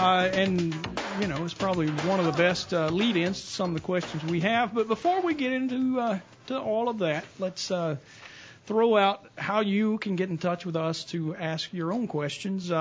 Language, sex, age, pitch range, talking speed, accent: English, male, 40-59, 165-215 Hz, 215 wpm, American